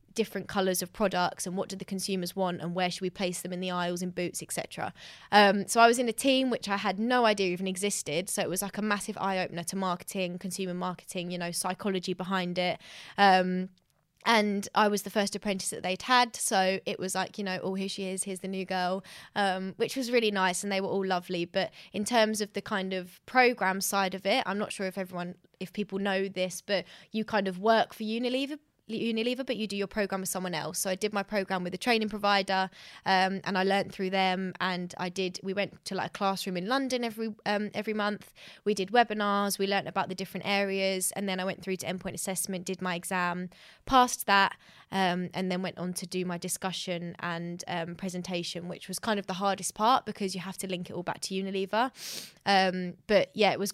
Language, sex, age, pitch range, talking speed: English, female, 20-39, 185-205 Hz, 230 wpm